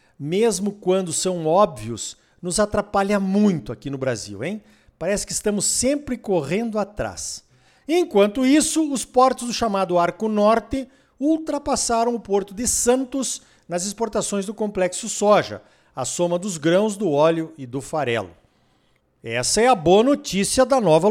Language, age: Portuguese, 50-69